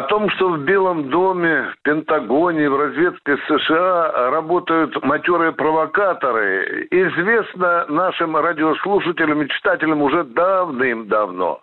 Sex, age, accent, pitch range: male, 60-79, native, 160-205 Hz